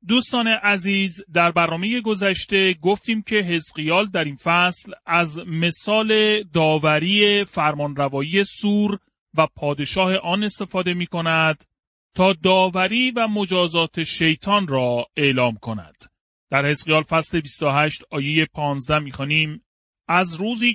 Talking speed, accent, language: 115 wpm, Canadian, French